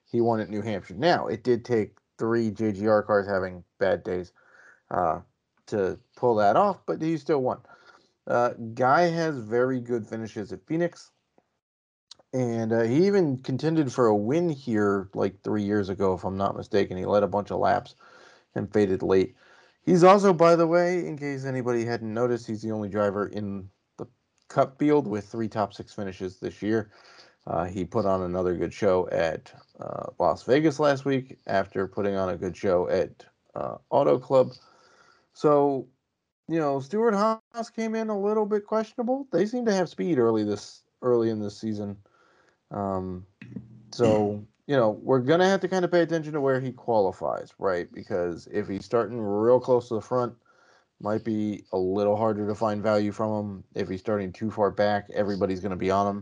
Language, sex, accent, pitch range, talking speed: English, male, American, 105-155 Hz, 190 wpm